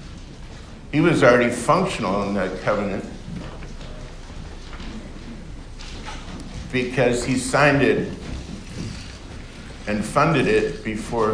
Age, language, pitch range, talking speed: 60-79, English, 110-130 Hz, 80 wpm